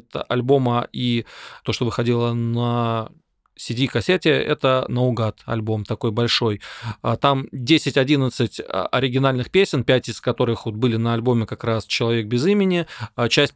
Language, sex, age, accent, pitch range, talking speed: Russian, male, 20-39, native, 115-135 Hz, 135 wpm